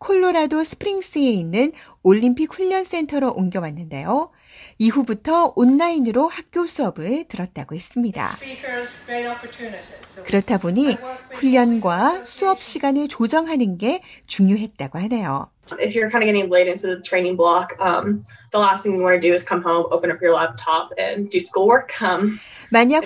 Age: 30-49